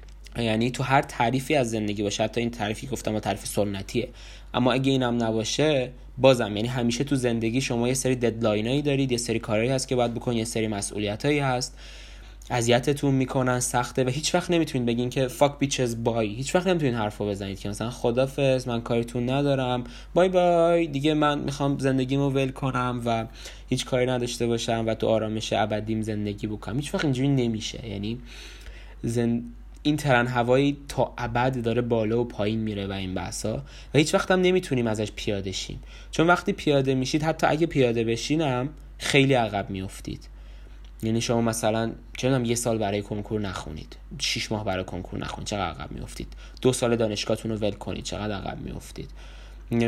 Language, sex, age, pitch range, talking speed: Persian, male, 20-39, 110-135 Hz, 180 wpm